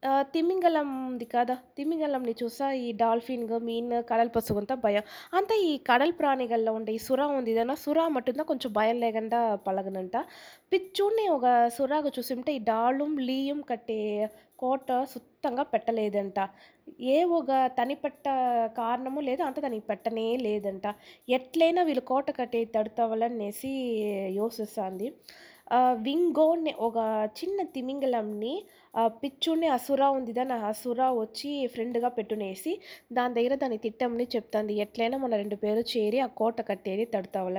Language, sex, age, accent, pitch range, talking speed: Telugu, female, 20-39, native, 215-270 Hz, 130 wpm